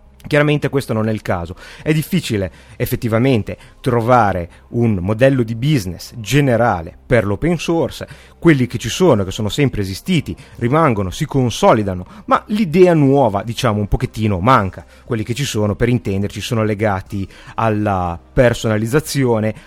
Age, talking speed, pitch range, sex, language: 30-49, 140 wpm, 100-135 Hz, male, Italian